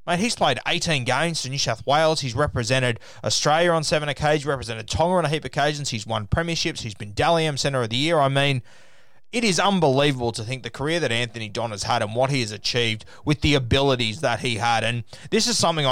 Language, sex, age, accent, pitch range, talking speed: English, male, 20-39, Australian, 115-145 Hz, 230 wpm